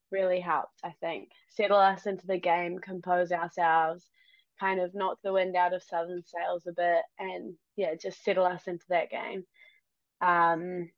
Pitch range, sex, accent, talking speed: 180-215 Hz, female, Australian, 170 wpm